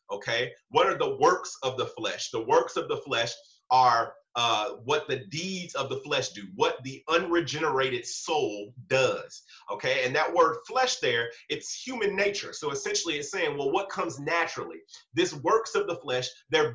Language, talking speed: English, 180 wpm